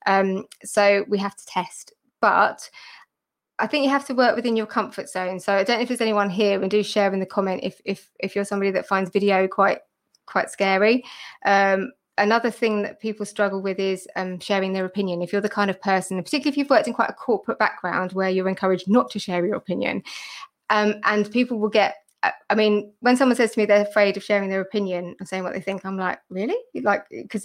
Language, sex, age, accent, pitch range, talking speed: English, female, 20-39, British, 195-215 Hz, 230 wpm